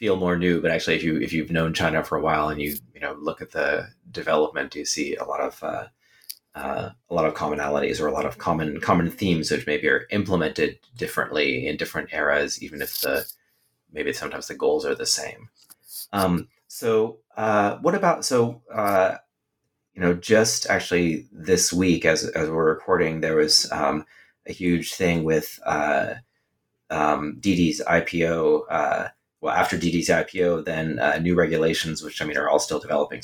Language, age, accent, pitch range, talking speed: English, 30-49, American, 80-90 Hz, 185 wpm